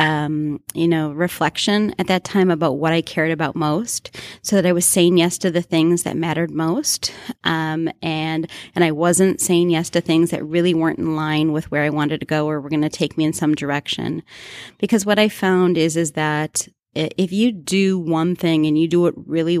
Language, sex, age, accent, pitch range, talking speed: English, female, 30-49, American, 155-175 Hz, 215 wpm